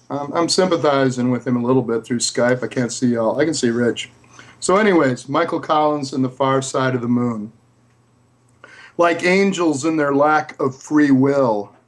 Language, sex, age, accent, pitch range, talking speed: English, male, 50-69, American, 125-150 Hz, 180 wpm